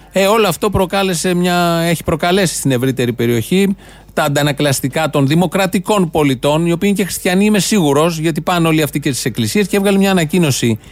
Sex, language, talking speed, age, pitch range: male, Greek, 175 wpm, 30-49, 125-180 Hz